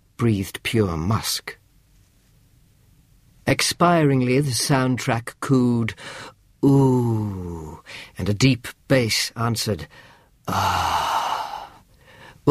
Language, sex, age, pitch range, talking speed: English, male, 50-69, 110-140 Hz, 65 wpm